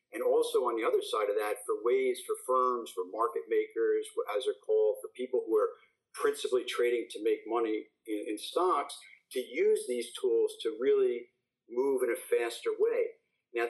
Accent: American